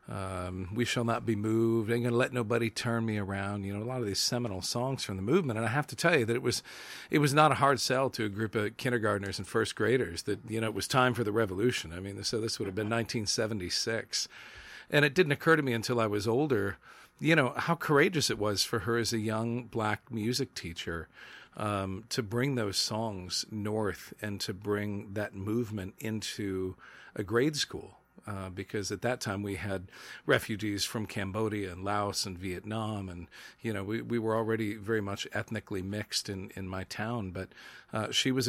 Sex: male